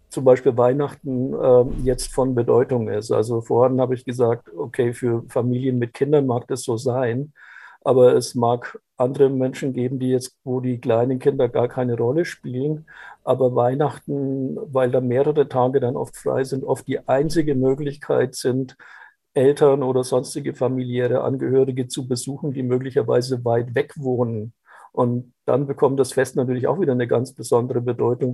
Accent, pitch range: German, 125-135 Hz